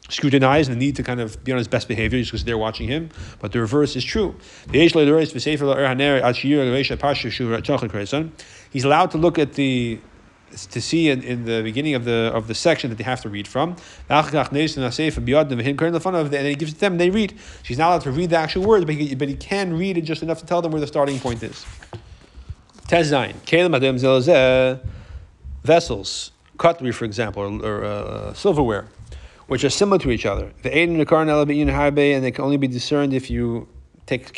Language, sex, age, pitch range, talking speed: English, male, 30-49, 120-150 Hz, 180 wpm